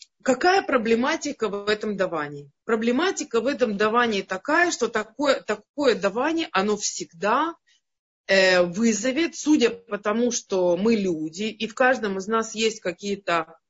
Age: 30-49